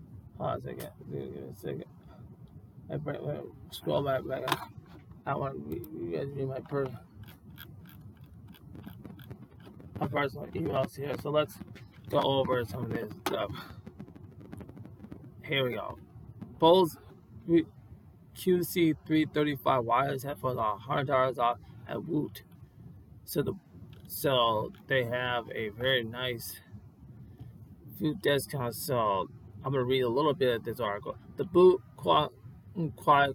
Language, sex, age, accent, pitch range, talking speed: English, male, 20-39, American, 115-145 Hz, 135 wpm